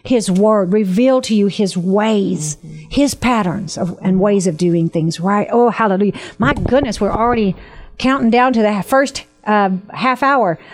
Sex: female